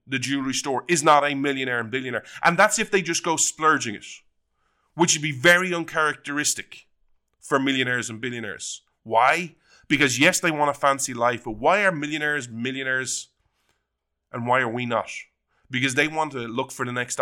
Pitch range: 115-160 Hz